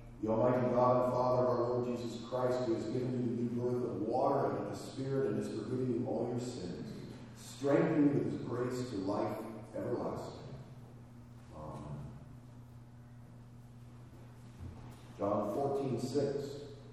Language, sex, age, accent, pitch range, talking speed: English, male, 40-59, American, 115-130 Hz, 145 wpm